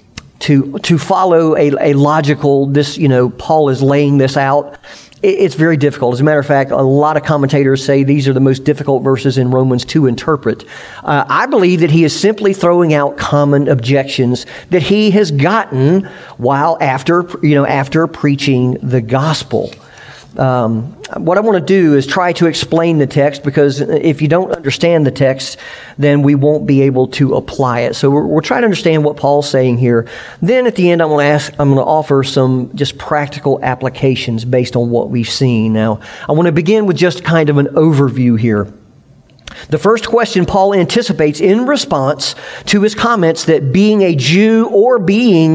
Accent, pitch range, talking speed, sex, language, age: American, 135-170 Hz, 190 wpm, male, English, 40-59